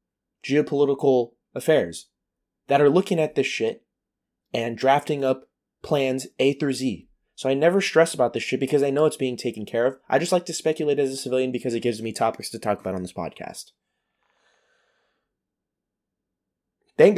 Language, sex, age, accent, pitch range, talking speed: English, male, 20-39, American, 120-150 Hz, 175 wpm